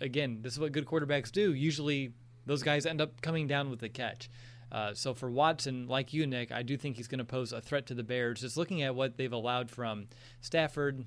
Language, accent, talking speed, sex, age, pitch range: English, American, 240 wpm, male, 20-39, 120-140 Hz